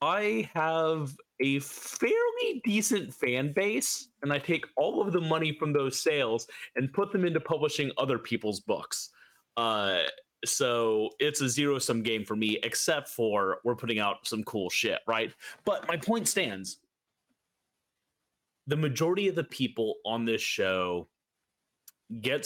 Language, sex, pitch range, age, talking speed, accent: English, male, 110-160 Hz, 30-49, 145 wpm, American